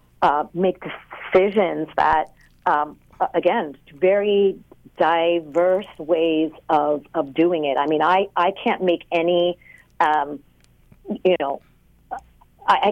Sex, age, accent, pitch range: female, 40-59, American, 155-195 Hz